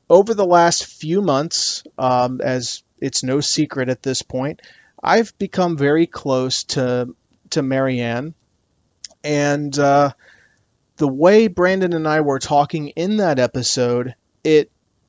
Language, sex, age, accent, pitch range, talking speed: English, male, 30-49, American, 130-155 Hz, 130 wpm